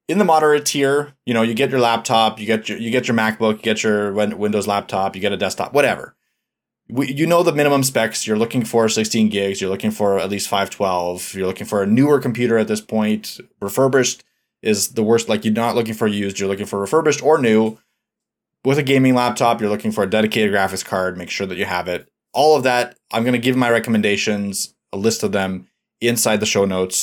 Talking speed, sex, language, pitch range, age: 220 wpm, male, English, 100-130 Hz, 20-39